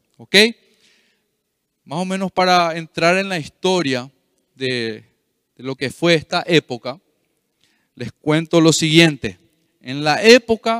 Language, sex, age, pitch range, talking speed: Spanish, male, 40-59, 135-180 Hz, 120 wpm